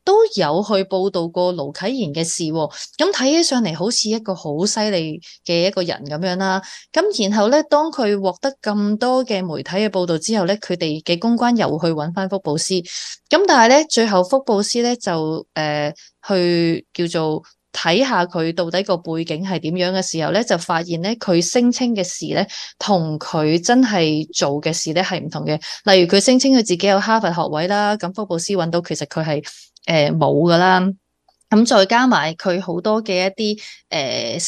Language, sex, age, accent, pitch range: Chinese, female, 20-39, native, 170-225 Hz